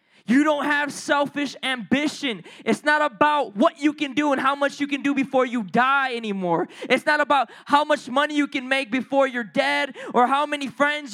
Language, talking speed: English, 205 wpm